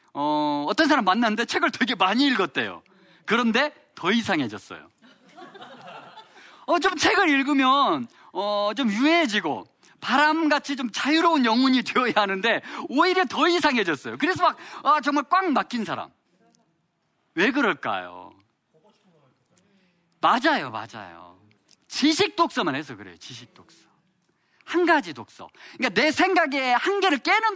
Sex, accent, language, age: male, native, Korean, 40-59